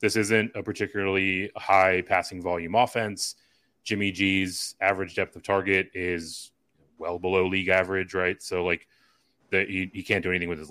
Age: 30-49